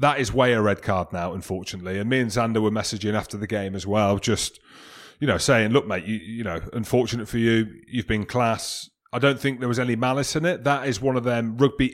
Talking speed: 245 wpm